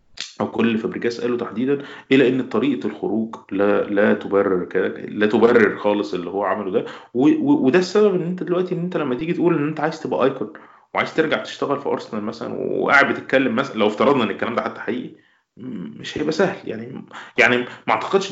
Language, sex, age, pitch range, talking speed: Arabic, male, 20-39, 115-180 Hz, 185 wpm